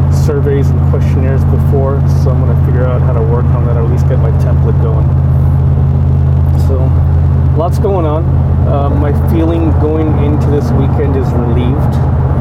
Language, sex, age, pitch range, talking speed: English, male, 30-49, 70-115 Hz, 165 wpm